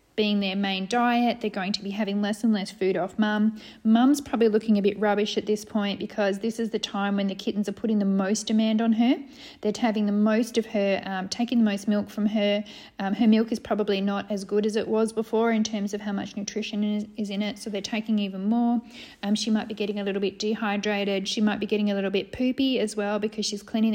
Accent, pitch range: Australian, 205-230 Hz